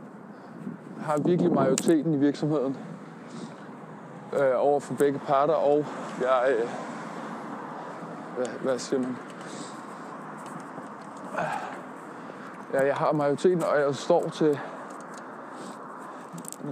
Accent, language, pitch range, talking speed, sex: native, Danish, 135-165 Hz, 90 wpm, male